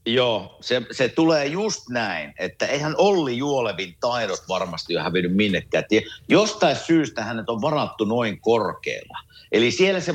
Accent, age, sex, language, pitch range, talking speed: native, 50-69, male, Finnish, 115-160 Hz, 150 wpm